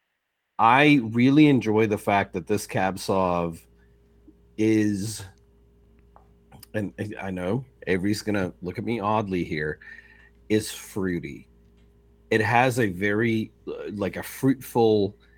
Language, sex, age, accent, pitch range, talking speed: English, male, 40-59, American, 95-120 Hz, 110 wpm